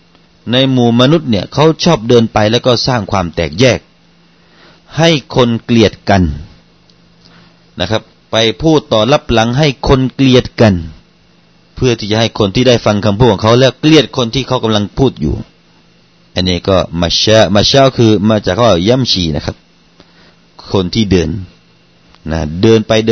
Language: Thai